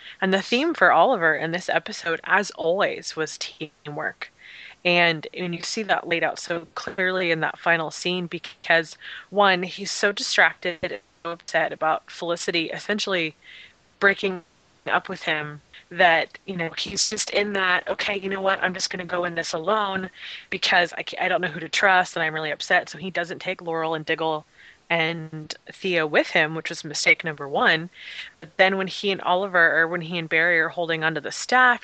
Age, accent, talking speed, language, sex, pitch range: 20-39, American, 190 wpm, English, female, 160-195 Hz